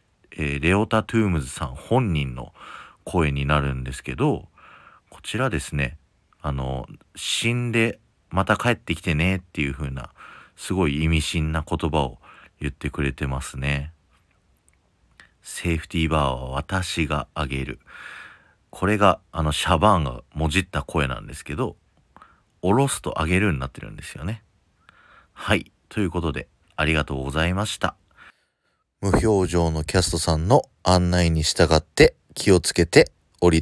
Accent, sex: native, male